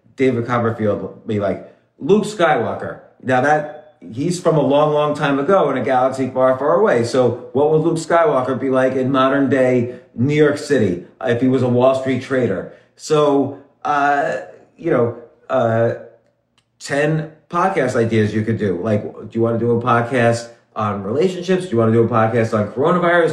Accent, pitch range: American, 120-160 Hz